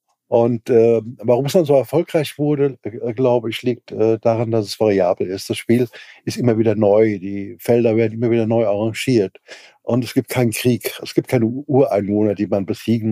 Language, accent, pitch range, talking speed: German, German, 105-120 Hz, 190 wpm